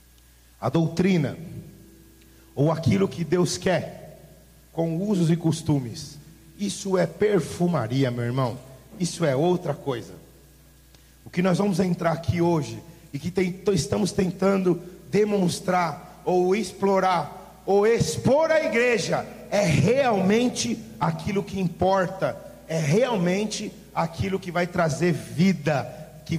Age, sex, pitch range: 40-59, male, 155-215 Hz